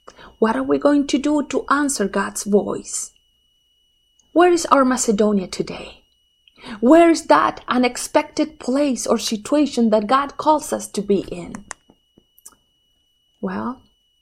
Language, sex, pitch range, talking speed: English, female, 205-265 Hz, 125 wpm